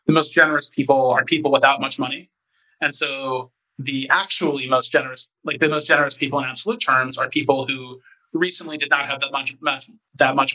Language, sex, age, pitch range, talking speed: English, male, 30-49, 130-155 Hz, 200 wpm